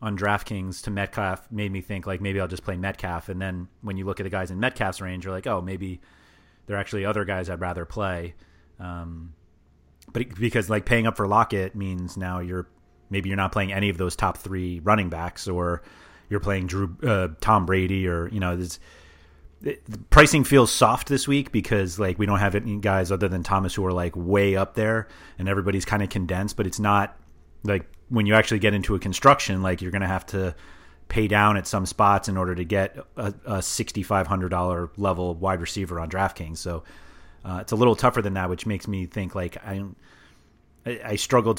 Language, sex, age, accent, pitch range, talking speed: English, male, 30-49, American, 90-100 Hz, 210 wpm